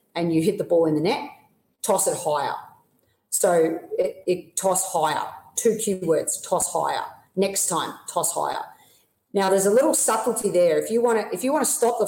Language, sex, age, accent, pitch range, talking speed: English, female, 40-59, Australian, 170-215 Hz, 200 wpm